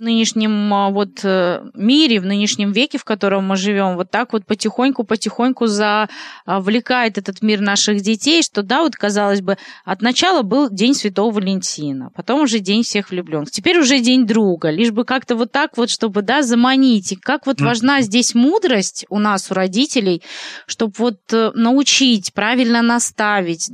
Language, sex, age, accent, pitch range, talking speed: Russian, female, 20-39, native, 195-240 Hz, 160 wpm